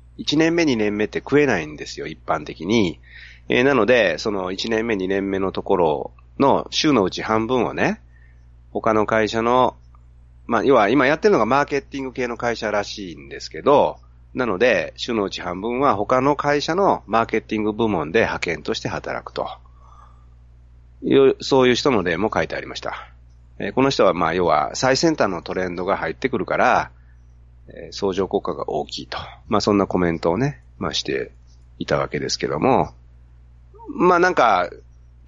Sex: male